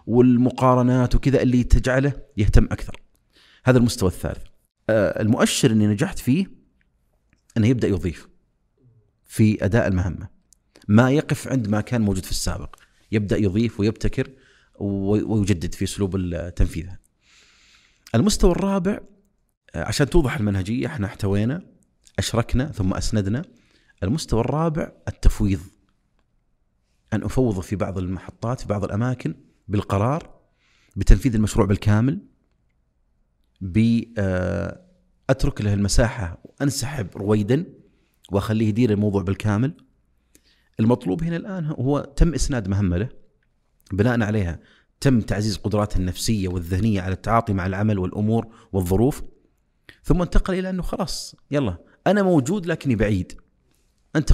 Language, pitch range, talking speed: Arabic, 95-130 Hz, 110 wpm